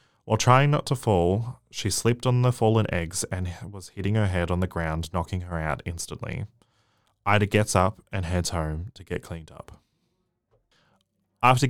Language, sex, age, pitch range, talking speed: English, male, 20-39, 90-115 Hz, 175 wpm